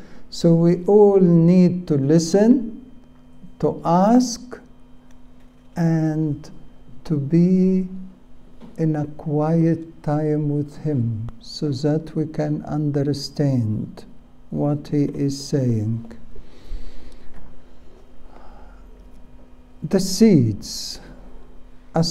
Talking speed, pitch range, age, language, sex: 80 wpm, 140-190 Hz, 60-79, English, male